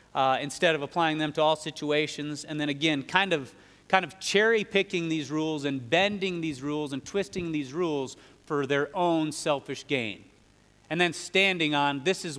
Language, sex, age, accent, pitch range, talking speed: English, male, 30-49, American, 140-175 Hz, 175 wpm